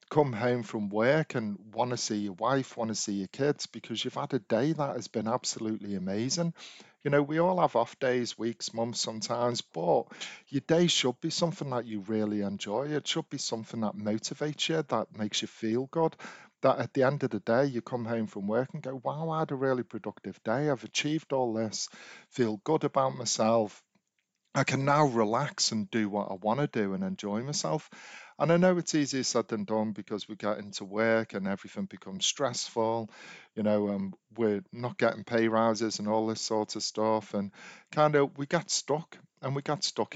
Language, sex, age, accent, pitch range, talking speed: English, male, 40-59, British, 110-155 Hz, 210 wpm